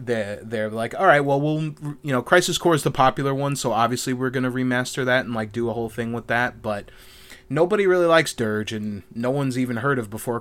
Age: 20-39